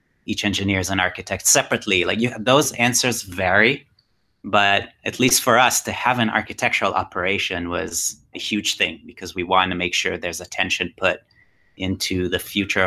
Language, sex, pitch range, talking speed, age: English, male, 95-115 Hz, 175 wpm, 30-49